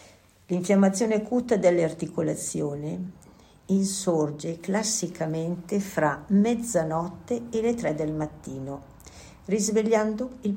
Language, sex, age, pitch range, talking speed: Italian, female, 50-69, 150-190 Hz, 80 wpm